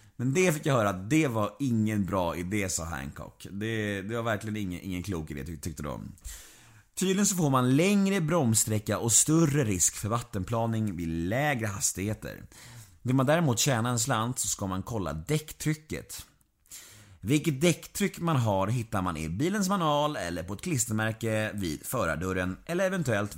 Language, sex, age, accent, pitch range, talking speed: Swedish, male, 30-49, native, 100-145 Hz, 165 wpm